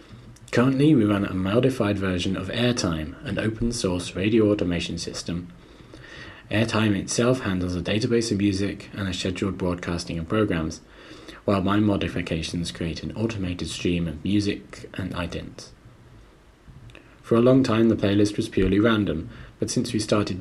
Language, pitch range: English, 85-105 Hz